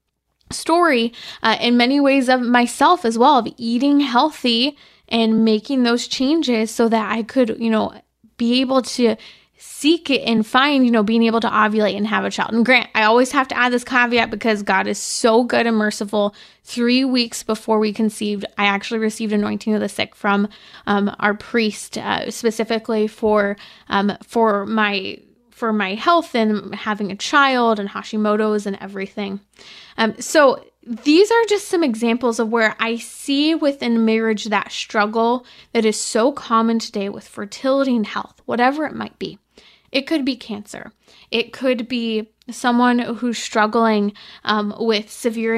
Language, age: English, 20-39